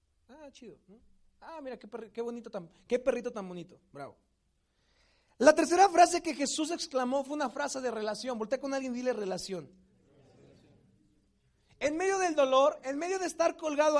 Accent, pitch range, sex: Mexican, 235-310 Hz, male